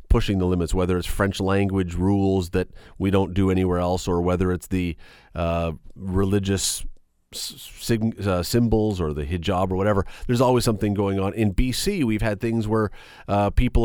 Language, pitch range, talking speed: English, 95-120 Hz, 175 wpm